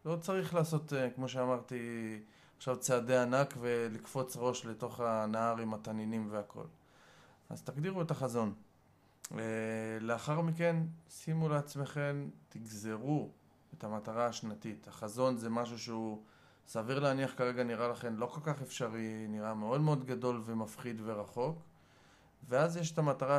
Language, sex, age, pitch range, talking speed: Hebrew, male, 20-39, 110-140 Hz, 130 wpm